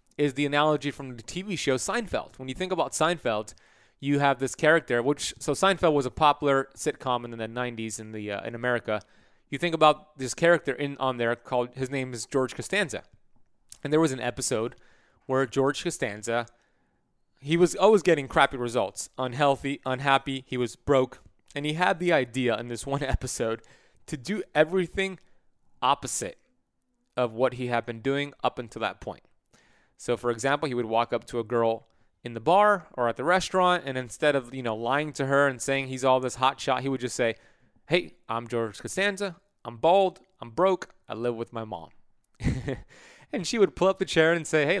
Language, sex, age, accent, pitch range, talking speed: English, male, 20-39, American, 120-155 Hz, 195 wpm